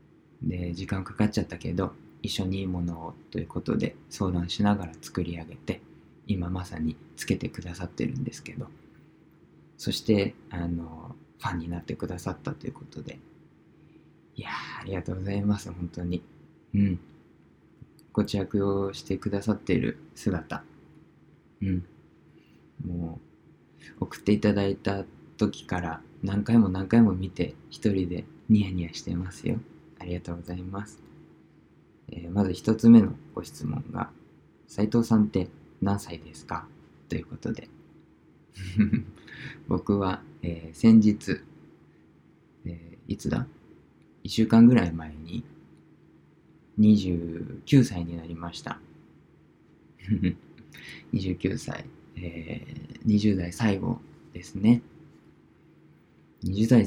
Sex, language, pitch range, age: male, Japanese, 85-105 Hz, 20-39